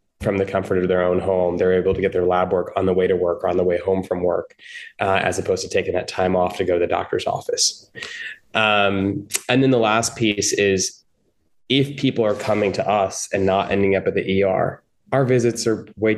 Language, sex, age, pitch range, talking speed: English, male, 20-39, 95-135 Hz, 235 wpm